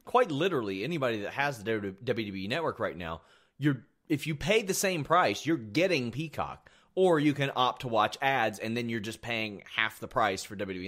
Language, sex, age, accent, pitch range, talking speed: English, male, 30-49, American, 110-155 Hz, 205 wpm